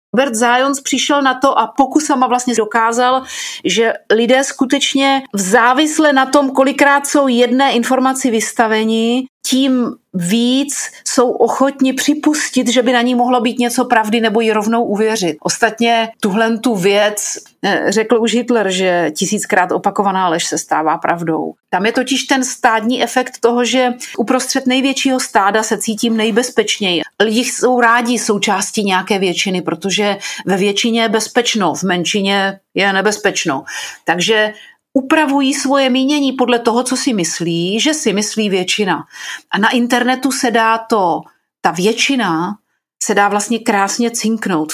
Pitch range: 205-255 Hz